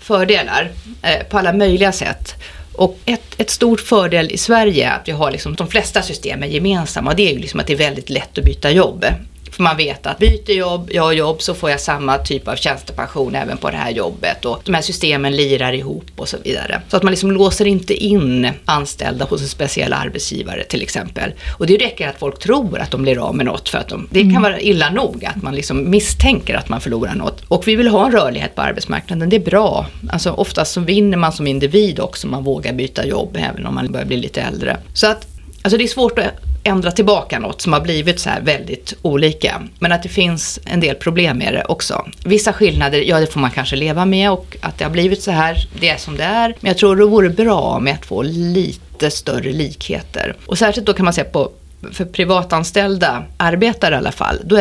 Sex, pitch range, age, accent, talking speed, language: female, 150-200 Hz, 30-49, native, 230 wpm, Swedish